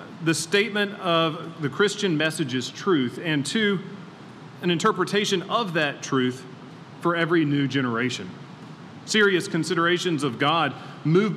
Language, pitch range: English, 145-185 Hz